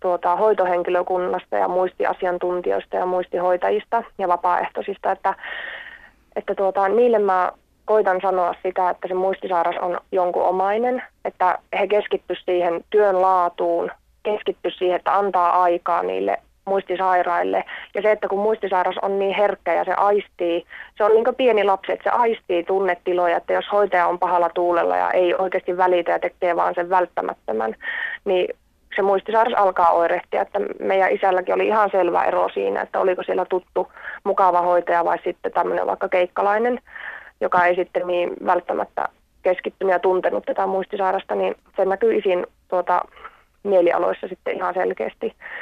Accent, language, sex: native, Finnish, female